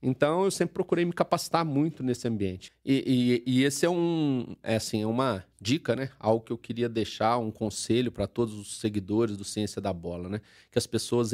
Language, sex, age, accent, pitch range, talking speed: Portuguese, male, 40-59, Brazilian, 105-130 Hz, 205 wpm